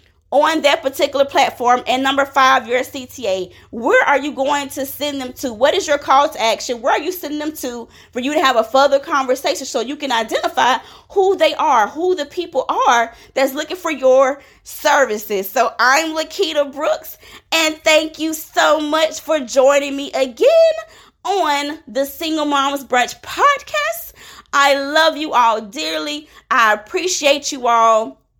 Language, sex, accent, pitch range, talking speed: English, female, American, 260-320 Hz, 170 wpm